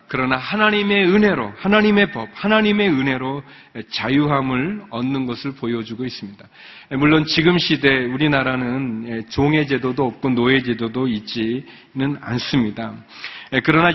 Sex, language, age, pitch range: male, Korean, 40-59, 125-175 Hz